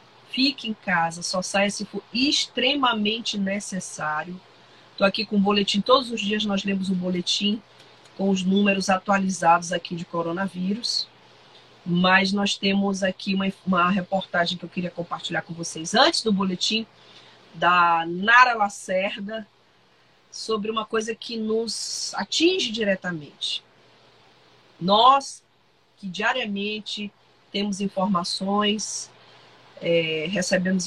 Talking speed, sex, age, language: 115 wpm, female, 40-59, Portuguese